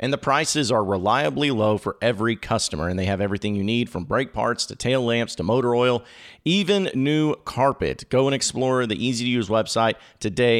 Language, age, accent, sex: English, 40-59, American, male